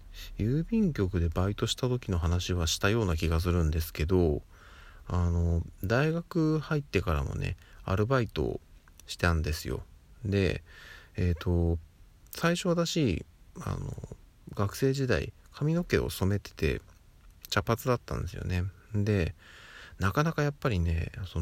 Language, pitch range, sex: Japanese, 85-110 Hz, male